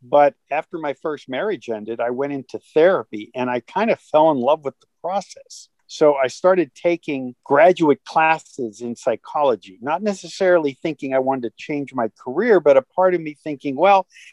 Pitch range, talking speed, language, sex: 130-165 Hz, 185 wpm, English, male